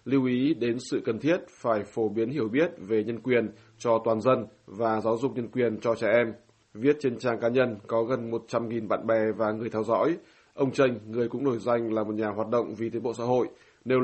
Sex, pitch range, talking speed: male, 110-125 Hz, 240 wpm